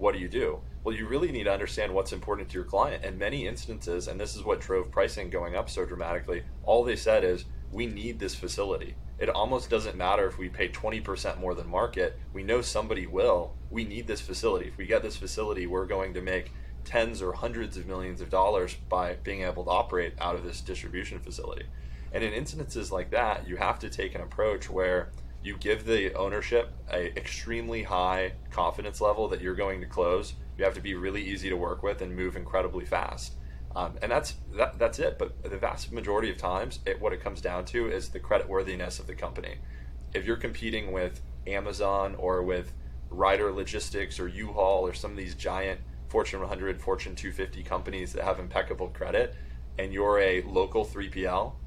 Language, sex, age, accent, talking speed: English, male, 20-39, American, 200 wpm